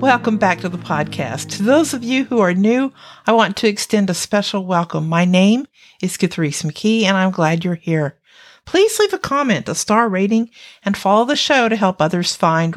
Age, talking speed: 50-69, 205 wpm